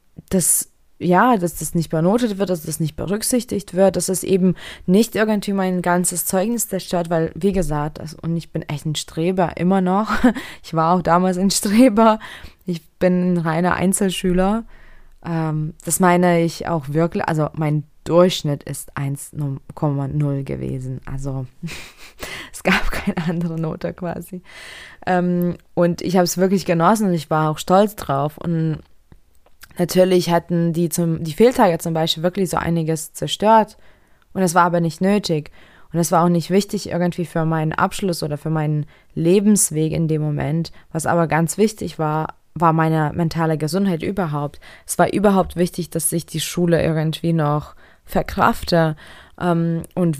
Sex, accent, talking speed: female, German, 160 wpm